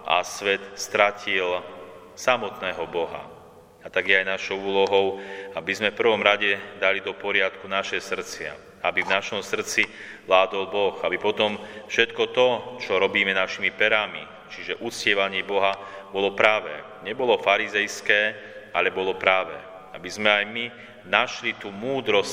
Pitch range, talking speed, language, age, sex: 95-110 Hz, 135 wpm, Slovak, 40-59, male